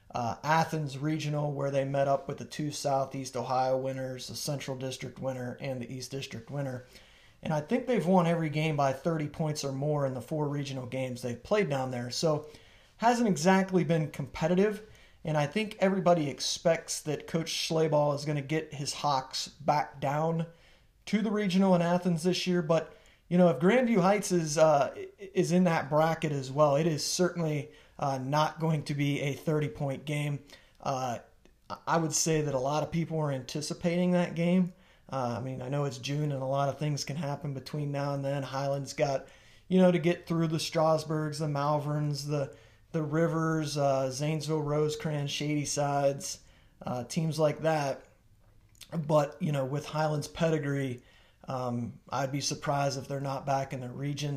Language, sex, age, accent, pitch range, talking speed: English, male, 30-49, American, 135-165 Hz, 185 wpm